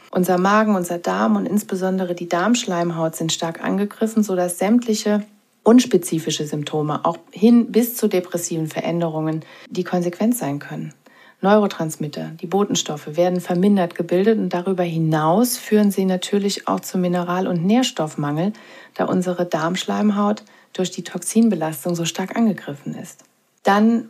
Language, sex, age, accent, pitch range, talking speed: German, female, 40-59, German, 170-210 Hz, 130 wpm